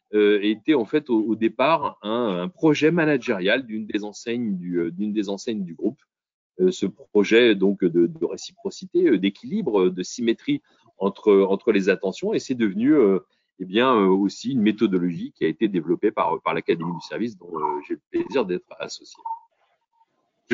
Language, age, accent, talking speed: French, 40-59, French, 160 wpm